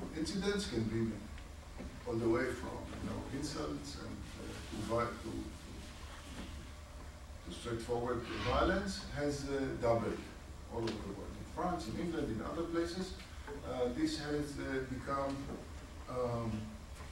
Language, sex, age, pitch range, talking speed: English, male, 50-69, 80-120 Hz, 120 wpm